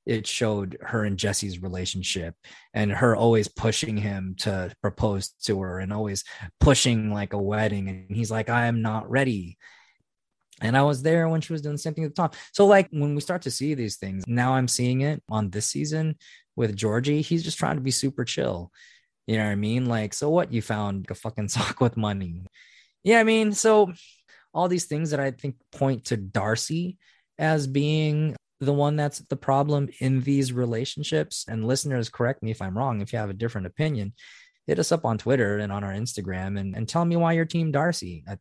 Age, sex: 20-39, male